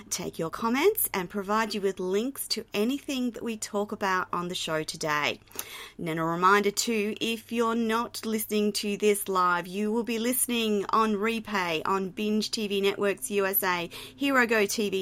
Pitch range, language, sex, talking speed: 185-220 Hz, English, female, 170 wpm